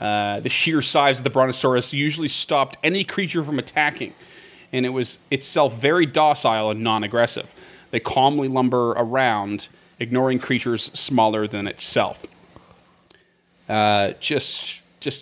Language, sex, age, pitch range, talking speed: English, male, 30-49, 115-140 Hz, 130 wpm